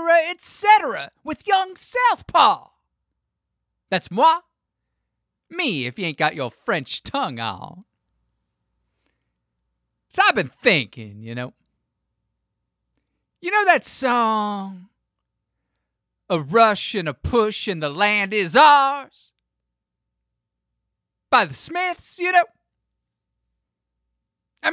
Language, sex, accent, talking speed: English, male, American, 100 wpm